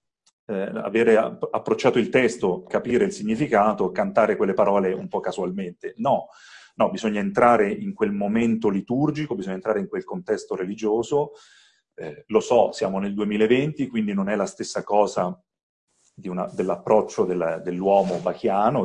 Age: 40-59